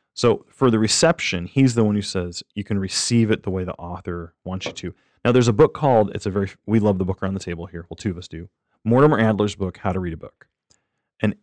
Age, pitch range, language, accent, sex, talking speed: 30-49, 95-115 Hz, English, American, male, 265 wpm